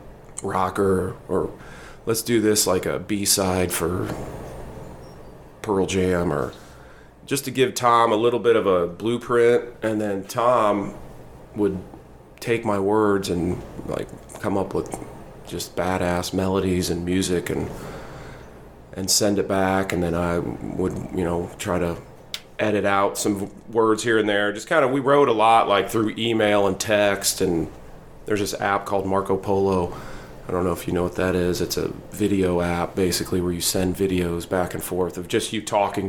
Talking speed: 170 wpm